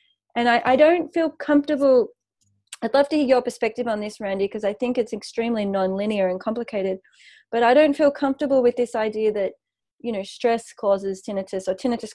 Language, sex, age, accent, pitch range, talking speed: English, female, 30-49, Australian, 205-260 Hz, 195 wpm